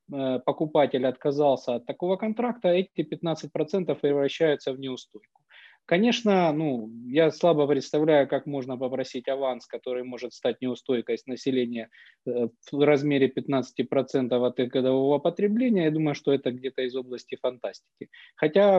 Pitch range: 135-170 Hz